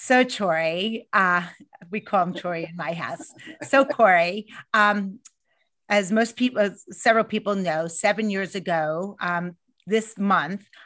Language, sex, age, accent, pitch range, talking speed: English, female, 40-59, American, 175-215 Hz, 140 wpm